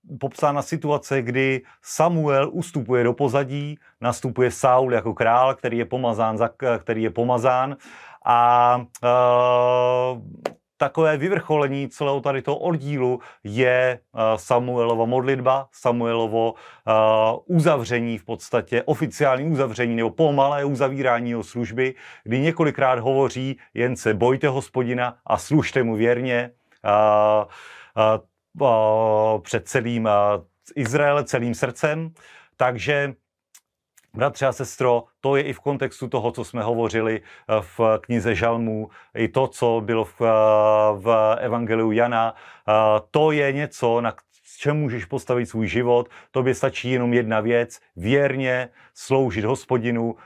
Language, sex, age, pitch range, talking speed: Slovak, male, 30-49, 115-135 Hz, 120 wpm